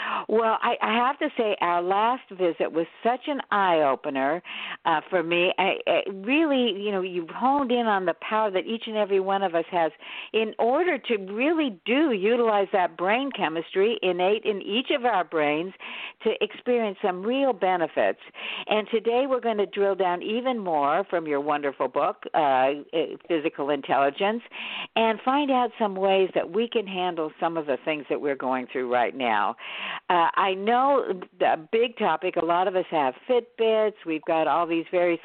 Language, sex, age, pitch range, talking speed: English, female, 60-79, 175-230 Hz, 175 wpm